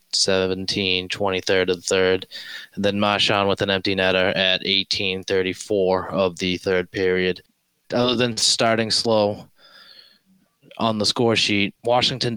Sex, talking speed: male, 140 wpm